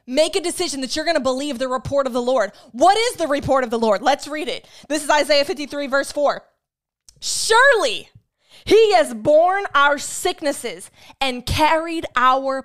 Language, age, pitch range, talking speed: English, 20-39, 250-310 Hz, 180 wpm